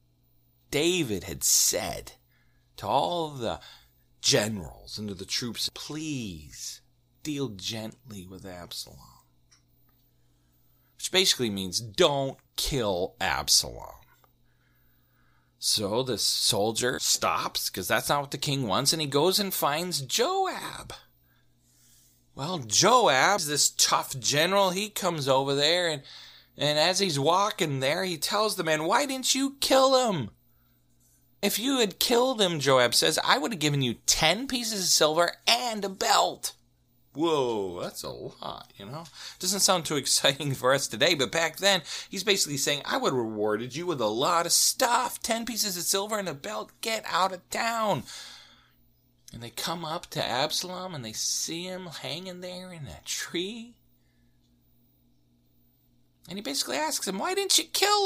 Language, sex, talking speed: English, male, 150 wpm